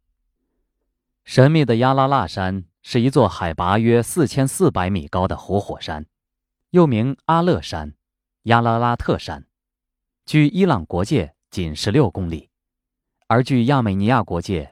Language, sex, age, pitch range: Chinese, male, 20-39, 90-150 Hz